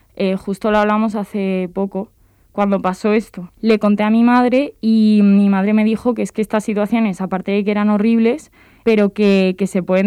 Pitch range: 185-210 Hz